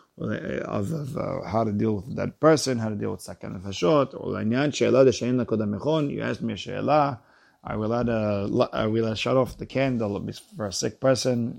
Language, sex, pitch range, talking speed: English, male, 105-125 Hz, 160 wpm